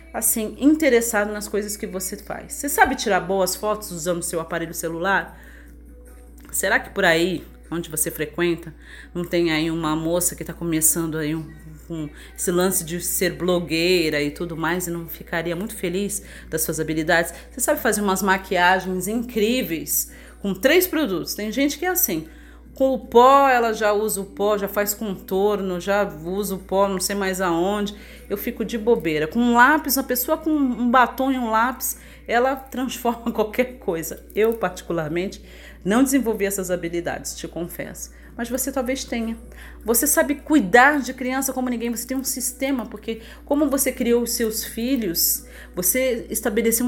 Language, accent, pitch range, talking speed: Portuguese, Brazilian, 175-250 Hz, 170 wpm